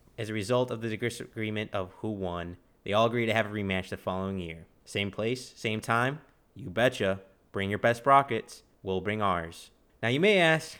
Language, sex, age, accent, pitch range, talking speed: English, male, 20-39, American, 95-125 Hz, 200 wpm